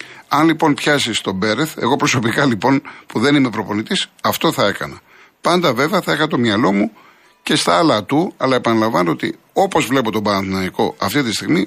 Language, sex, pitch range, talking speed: Greek, male, 105-135 Hz, 185 wpm